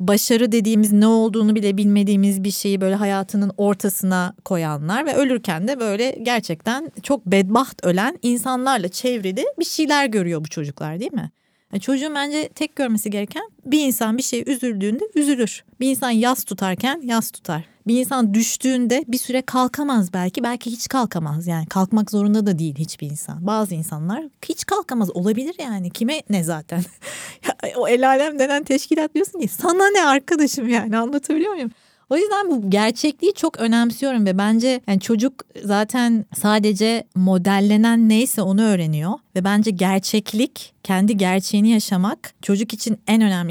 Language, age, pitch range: Turkish, 30-49, 195-255 Hz